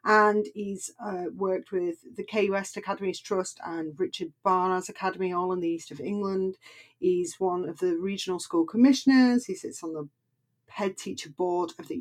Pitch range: 175-230 Hz